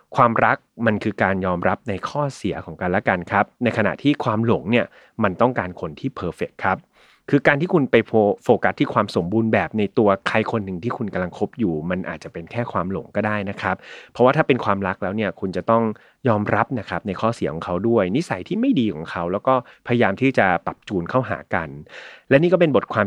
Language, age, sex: Thai, 30-49, male